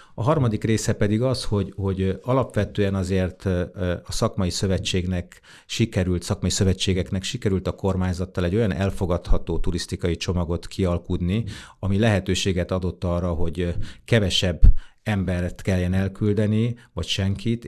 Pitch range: 90-105 Hz